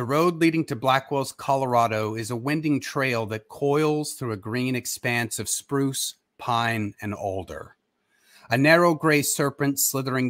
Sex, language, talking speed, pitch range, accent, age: male, English, 150 wpm, 115-145 Hz, American, 30-49